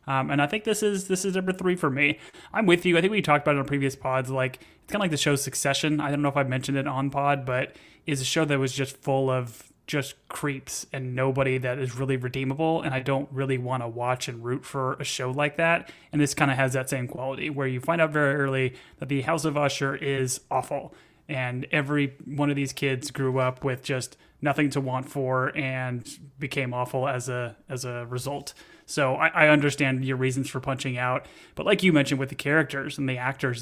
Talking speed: 240 wpm